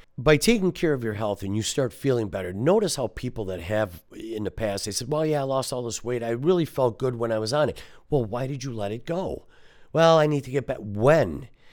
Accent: American